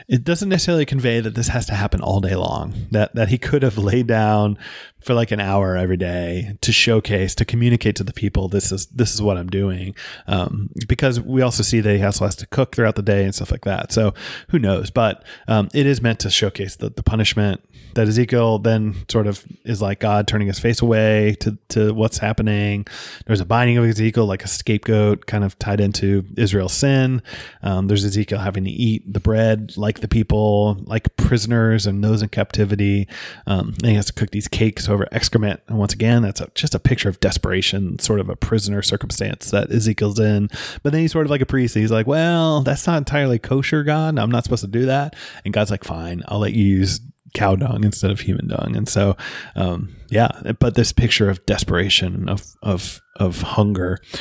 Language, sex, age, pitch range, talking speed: English, male, 30-49, 100-120 Hz, 215 wpm